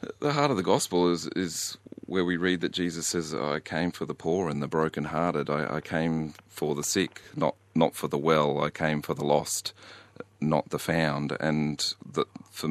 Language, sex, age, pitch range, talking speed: English, male, 40-59, 75-85 Hz, 205 wpm